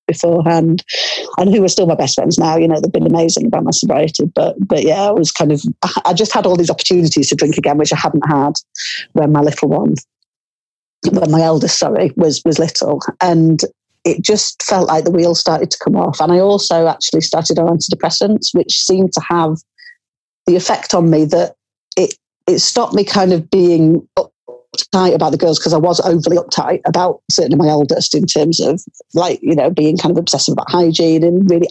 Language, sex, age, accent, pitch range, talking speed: English, female, 40-59, British, 155-180 Hz, 210 wpm